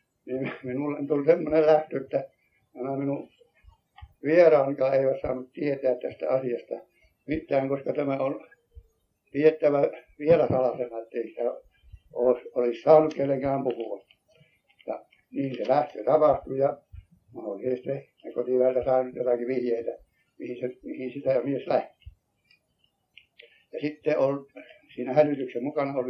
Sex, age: male, 60-79